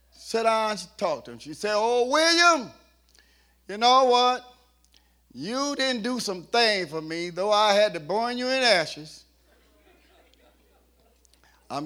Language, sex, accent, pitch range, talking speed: English, male, American, 170-250 Hz, 150 wpm